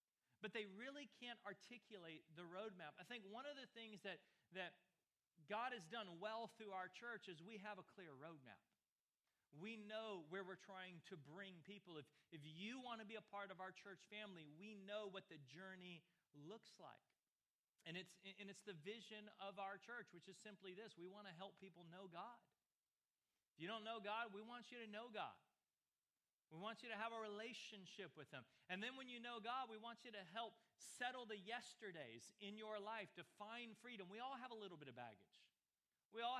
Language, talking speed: English, 205 wpm